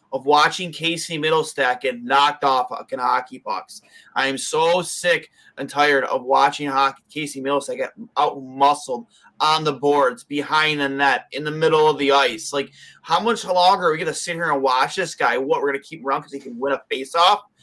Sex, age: male, 20-39